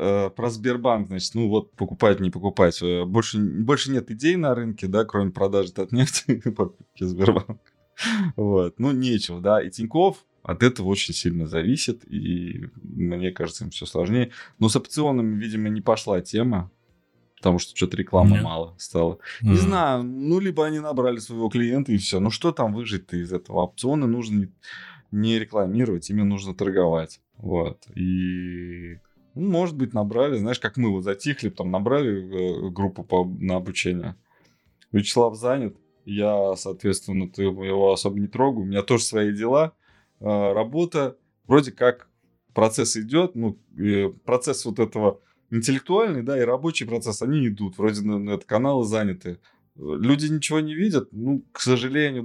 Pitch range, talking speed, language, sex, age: 95-125 Hz, 150 wpm, Russian, male, 20-39